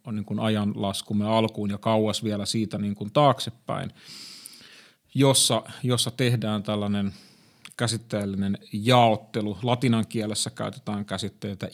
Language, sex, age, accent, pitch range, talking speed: Finnish, male, 30-49, native, 105-125 Hz, 110 wpm